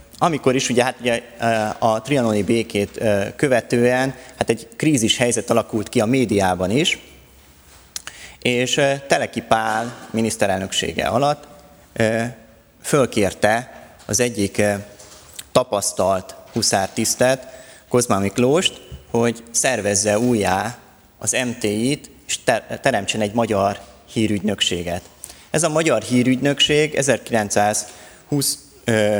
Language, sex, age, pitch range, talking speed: Hungarian, male, 30-49, 100-125 Hz, 90 wpm